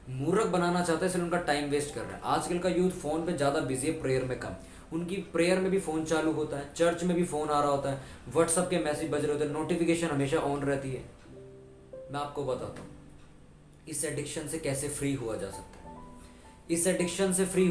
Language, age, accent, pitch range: Hindi, 20-39, native, 130-165 Hz